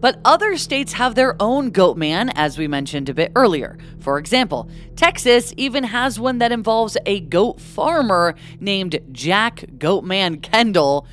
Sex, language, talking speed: female, English, 155 wpm